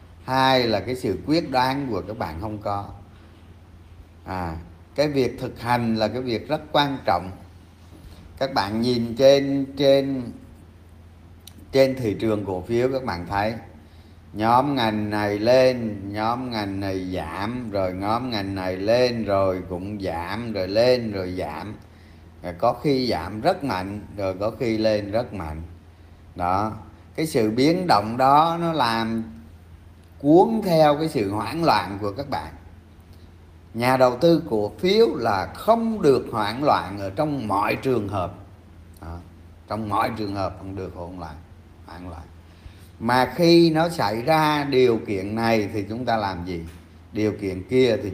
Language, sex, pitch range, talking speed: Vietnamese, male, 85-120 Hz, 155 wpm